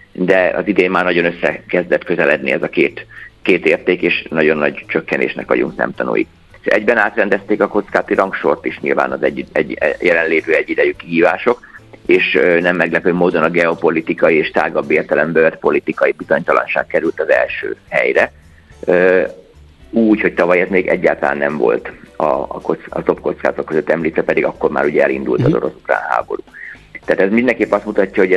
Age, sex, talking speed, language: 50-69, male, 160 wpm, Hungarian